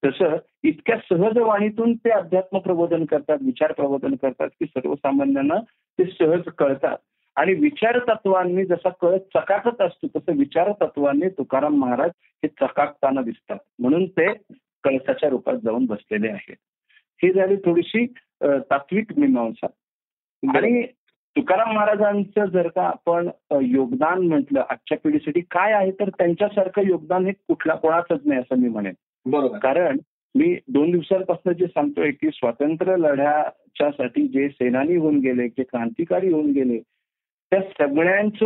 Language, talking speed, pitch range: Marathi, 130 wpm, 145-205 Hz